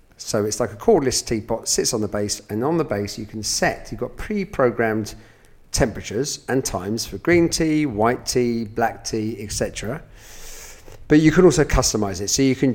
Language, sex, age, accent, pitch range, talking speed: English, male, 40-59, British, 105-135 Hz, 190 wpm